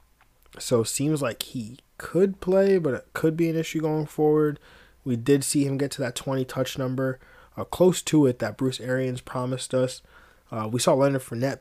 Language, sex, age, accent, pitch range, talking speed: English, male, 20-39, American, 115-135 Hz, 195 wpm